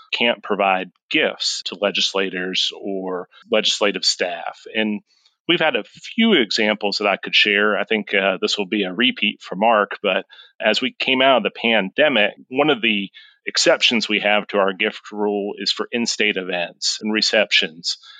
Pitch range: 100-125 Hz